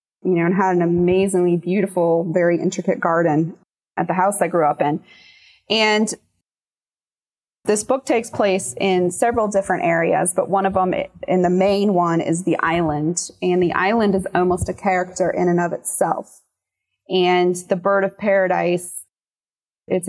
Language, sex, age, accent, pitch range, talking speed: English, female, 20-39, American, 175-195 Hz, 160 wpm